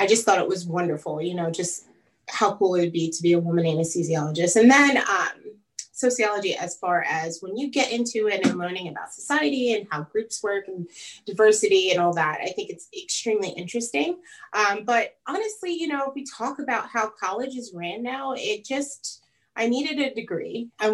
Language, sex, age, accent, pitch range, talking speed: English, female, 30-49, American, 175-255 Hz, 200 wpm